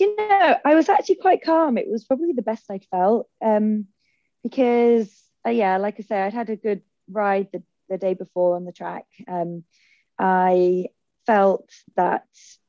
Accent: British